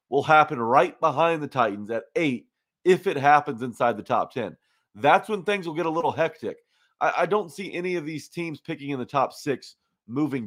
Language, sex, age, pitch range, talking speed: English, male, 30-49, 120-160 Hz, 210 wpm